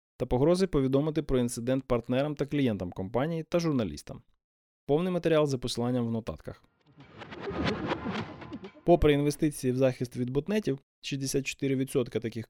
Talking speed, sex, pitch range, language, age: 120 wpm, male, 120-145 Hz, Ukrainian, 20-39